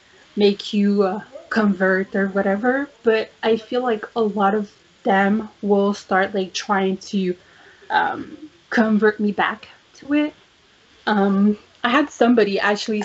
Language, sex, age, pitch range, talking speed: English, female, 20-39, 200-235 Hz, 140 wpm